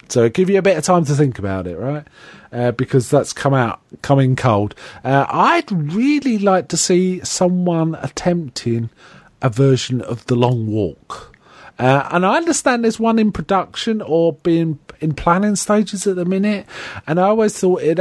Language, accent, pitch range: English, British, 120-180 Hz